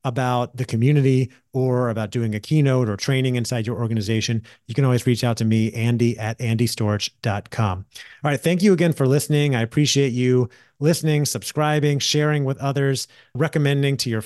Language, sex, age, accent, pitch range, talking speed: English, male, 30-49, American, 110-135 Hz, 175 wpm